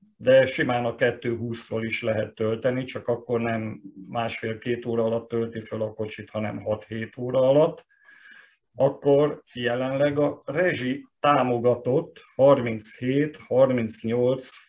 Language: Hungarian